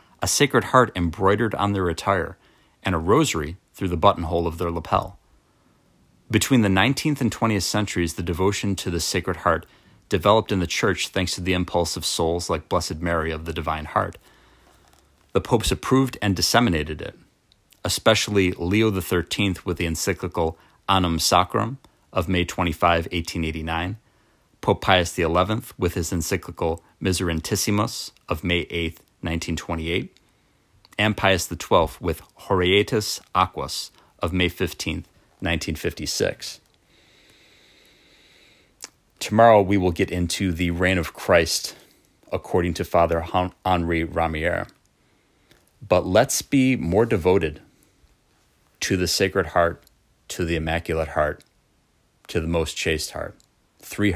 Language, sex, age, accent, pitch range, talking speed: English, male, 30-49, American, 85-100 Hz, 130 wpm